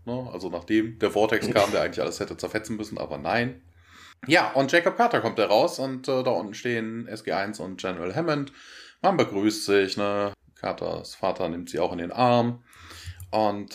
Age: 30-49